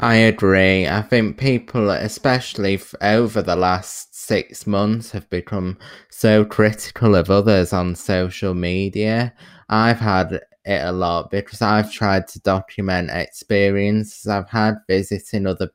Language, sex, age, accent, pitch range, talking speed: English, male, 20-39, British, 90-105 Hz, 135 wpm